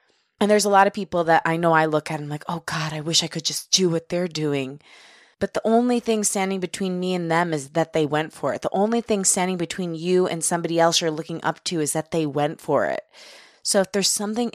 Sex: female